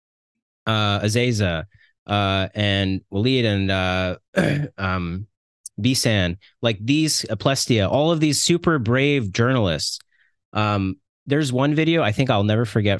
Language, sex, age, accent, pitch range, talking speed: English, male, 30-49, American, 95-120 Hz, 125 wpm